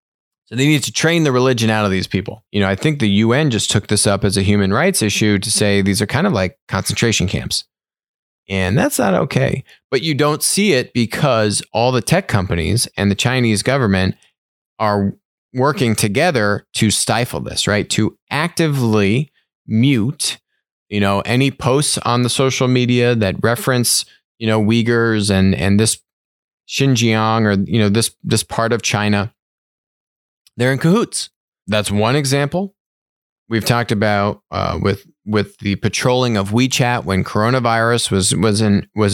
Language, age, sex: English, 20-39, male